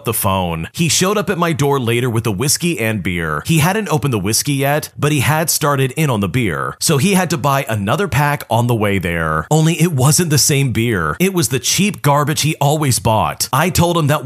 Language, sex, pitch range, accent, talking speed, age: English, male, 115-160 Hz, American, 240 wpm, 40-59